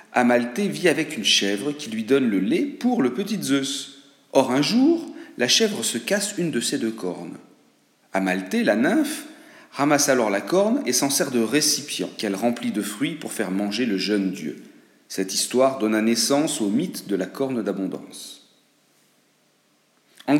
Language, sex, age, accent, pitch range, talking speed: French, male, 40-59, French, 105-150 Hz, 175 wpm